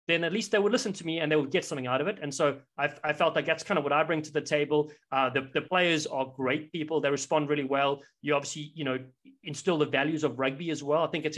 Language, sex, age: English, male, 30-49